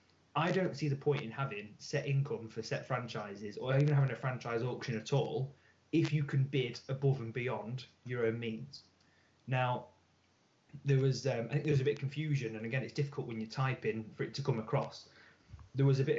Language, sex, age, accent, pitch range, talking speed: English, male, 20-39, British, 115-140 Hz, 215 wpm